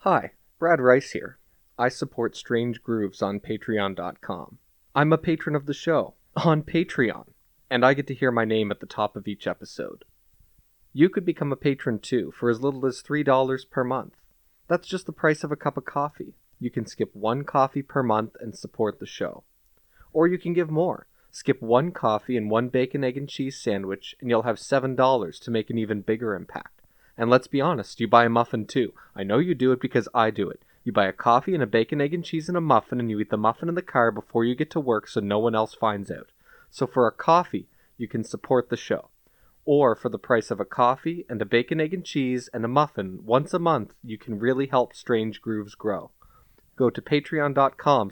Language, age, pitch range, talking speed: English, 30-49, 110-145 Hz, 220 wpm